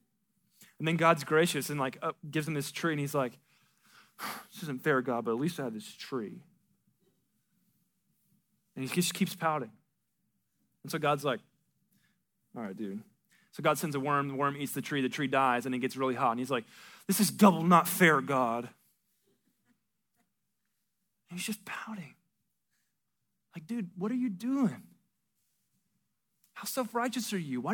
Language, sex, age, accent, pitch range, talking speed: English, male, 20-39, American, 145-200 Hz, 170 wpm